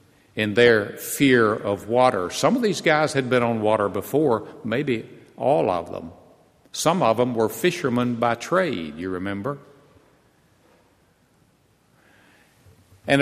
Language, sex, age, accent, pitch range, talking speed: English, male, 60-79, American, 110-150 Hz, 125 wpm